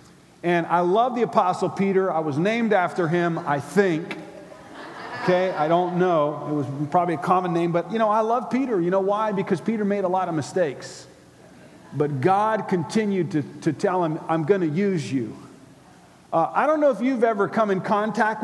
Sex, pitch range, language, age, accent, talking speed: male, 175-230 Hz, English, 50-69, American, 195 wpm